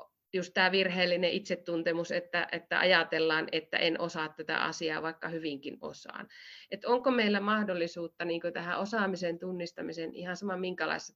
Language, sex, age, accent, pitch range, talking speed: Finnish, female, 30-49, native, 160-200 Hz, 140 wpm